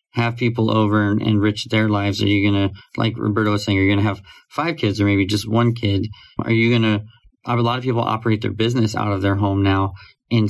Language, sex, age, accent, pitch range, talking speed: English, male, 30-49, American, 100-115 Hz, 250 wpm